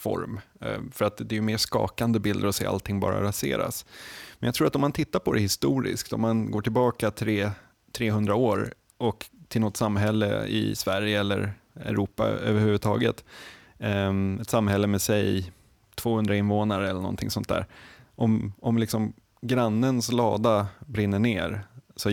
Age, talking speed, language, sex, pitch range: 20-39, 150 wpm, Swedish, male, 100-115 Hz